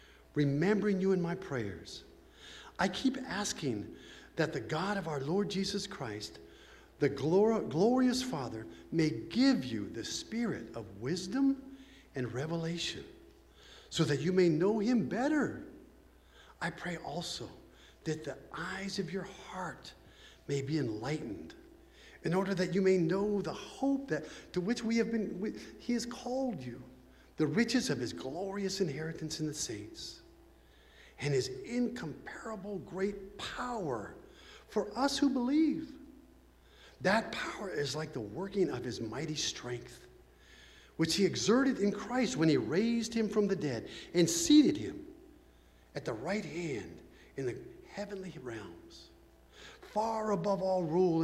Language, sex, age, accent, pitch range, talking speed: English, male, 50-69, American, 150-220 Hz, 145 wpm